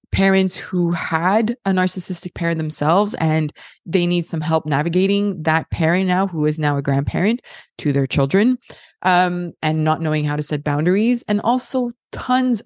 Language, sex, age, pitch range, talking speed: English, female, 20-39, 160-195 Hz, 165 wpm